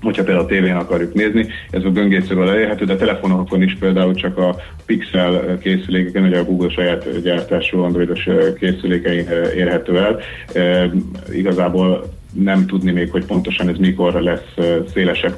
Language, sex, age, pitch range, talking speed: Hungarian, male, 30-49, 90-95 Hz, 150 wpm